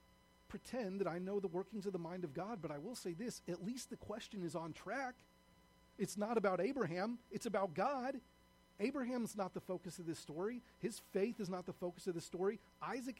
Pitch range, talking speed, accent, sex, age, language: 150-245 Hz, 215 wpm, American, male, 30-49, English